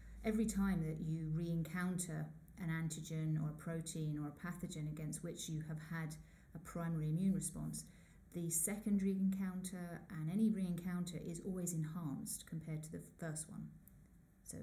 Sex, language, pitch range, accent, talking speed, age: female, English, 155-185 Hz, British, 150 wpm, 40-59